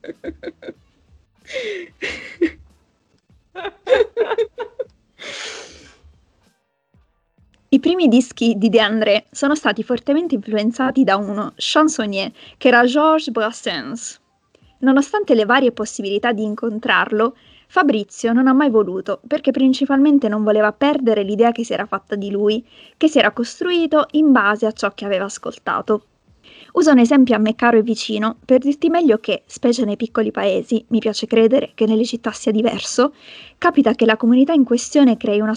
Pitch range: 215-275 Hz